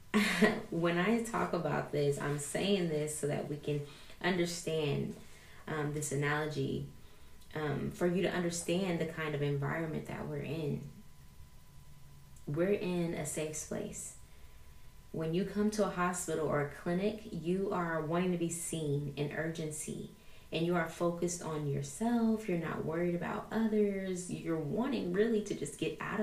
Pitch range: 155-185 Hz